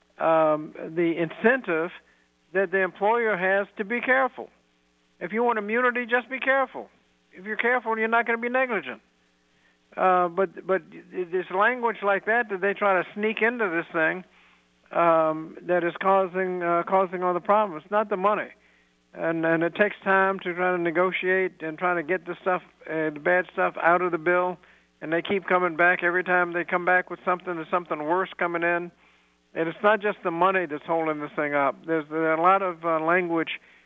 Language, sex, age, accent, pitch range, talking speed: English, male, 60-79, American, 160-190 Hz, 200 wpm